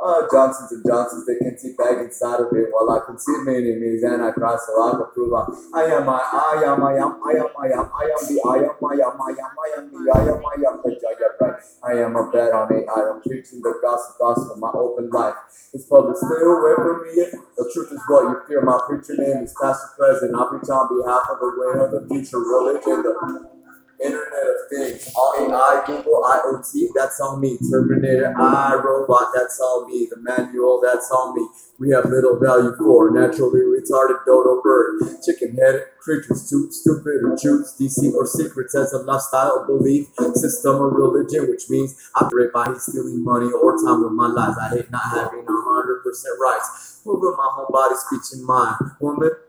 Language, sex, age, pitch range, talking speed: English, male, 20-39, 125-160 Hz, 205 wpm